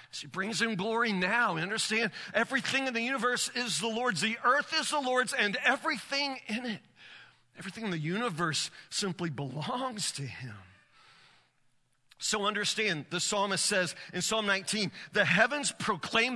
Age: 40-59